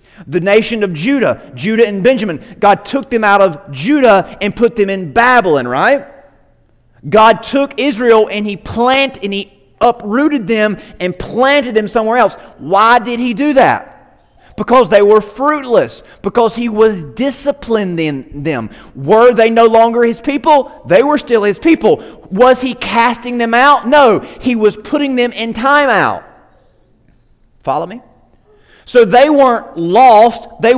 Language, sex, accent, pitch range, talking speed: English, male, American, 160-240 Hz, 155 wpm